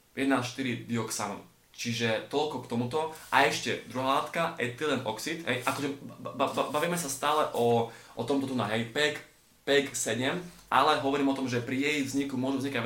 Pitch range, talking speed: 115-135 Hz, 160 wpm